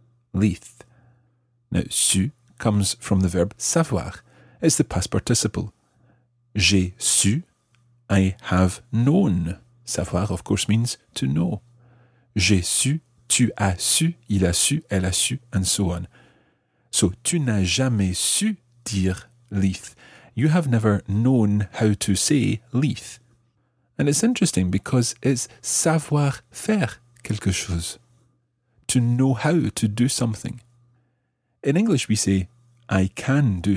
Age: 40-59